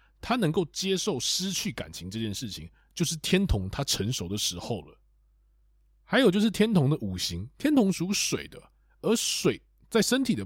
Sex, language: male, Chinese